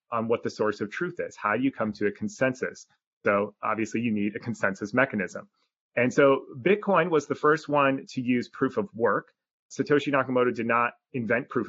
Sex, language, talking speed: male, English, 200 wpm